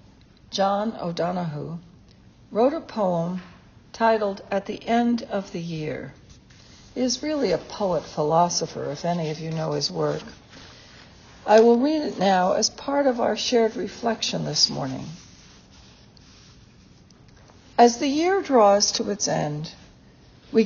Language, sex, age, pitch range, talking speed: English, female, 60-79, 180-235 Hz, 135 wpm